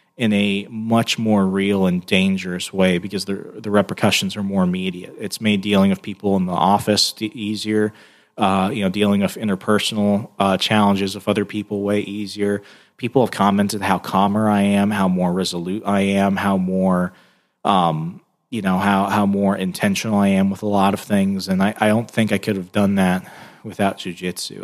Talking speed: 190 wpm